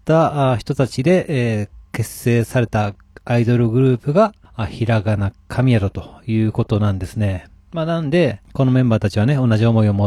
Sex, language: male, Japanese